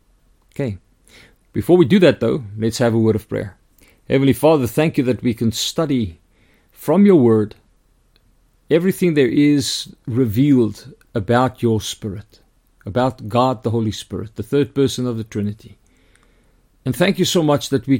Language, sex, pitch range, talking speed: English, male, 110-140 Hz, 160 wpm